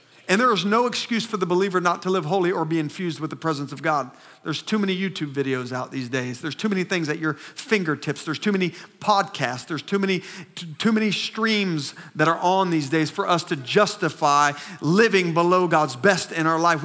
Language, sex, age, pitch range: English, male, 40-59, 175-215 Hz